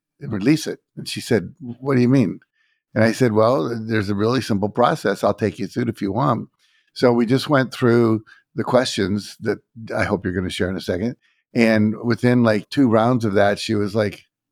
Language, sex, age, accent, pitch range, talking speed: English, male, 50-69, American, 100-130 Hz, 220 wpm